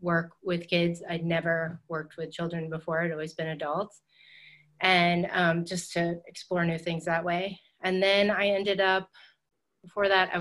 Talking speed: 175 wpm